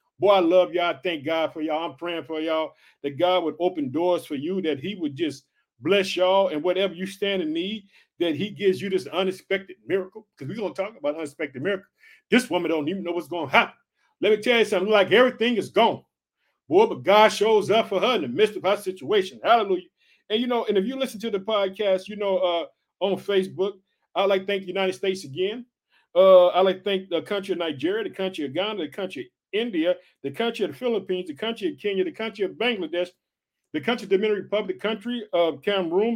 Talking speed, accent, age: 230 wpm, American, 50-69